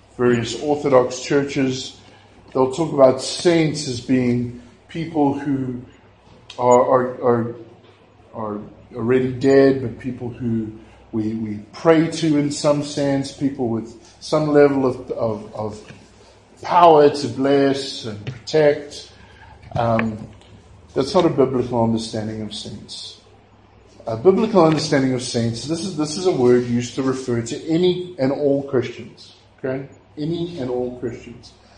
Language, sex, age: English, male, 50-69